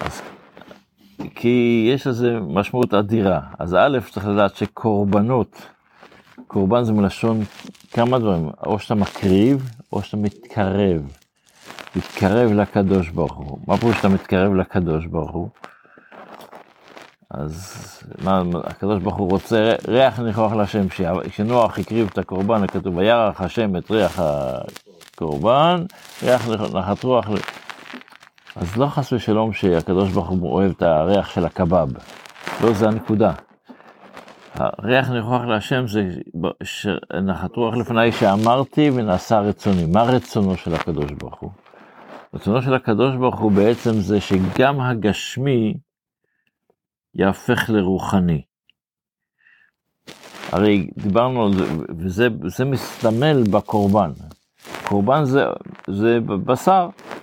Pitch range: 95-120 Hz